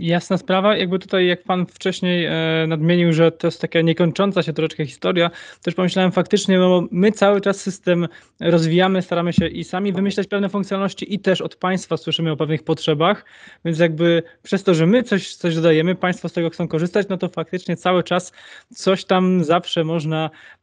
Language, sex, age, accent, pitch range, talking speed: Polish, male, 20-39, native, 145-180 Hz, 185 wpm